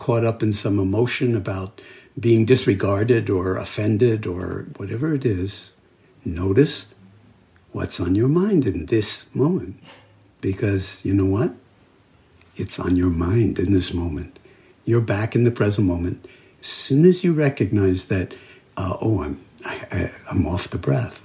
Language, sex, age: English, male, 60-79